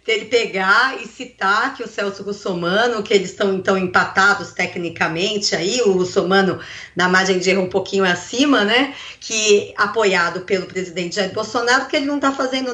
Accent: Brazilian